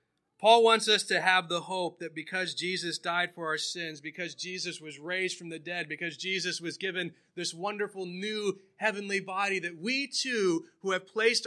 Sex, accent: male, American